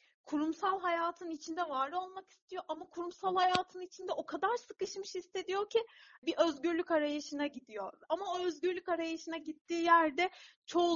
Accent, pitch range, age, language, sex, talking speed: native, 275-360 Hz, 30-49, Turkish, female, 140 wpm